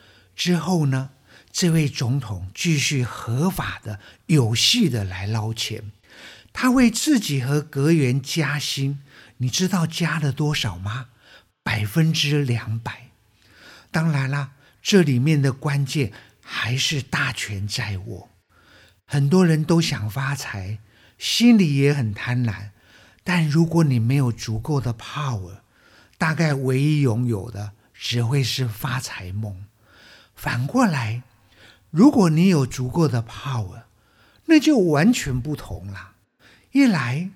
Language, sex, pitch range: Chinese, male, 110-160 Hz